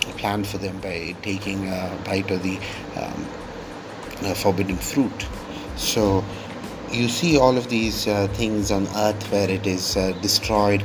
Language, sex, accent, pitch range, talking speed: English, male, Indian, 95-105 Hz, 150 wpm